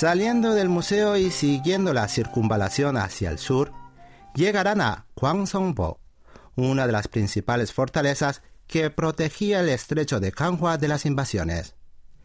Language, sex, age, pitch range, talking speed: Spanish, male, 50-69, 110-180 Hz, 130 wpm